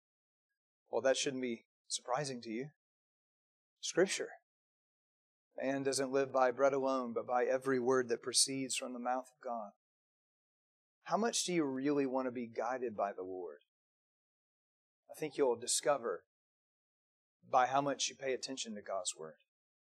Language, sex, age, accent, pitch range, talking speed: English, male, 30-49, American, 130-175 Hz, 150 wpm